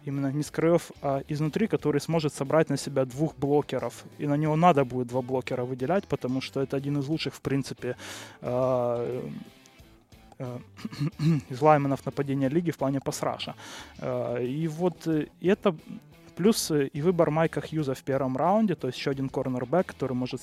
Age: 20-39